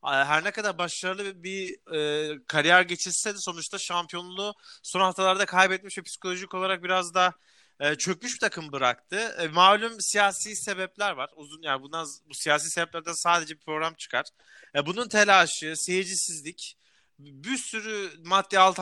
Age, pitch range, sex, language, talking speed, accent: 30-49, 155-205 Hz, male, Turkish, 155 wpm, native